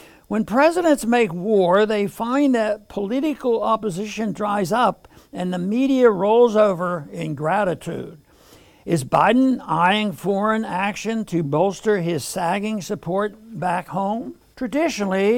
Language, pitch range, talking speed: English, 185-230 Hz, 120 wpm